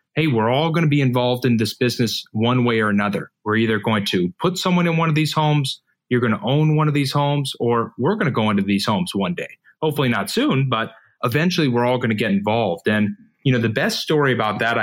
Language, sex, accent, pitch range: English, male, American, 120-165 Hz